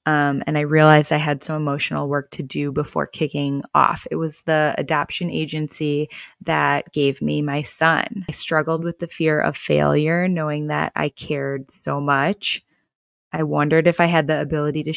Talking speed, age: 180 wpm, 20-39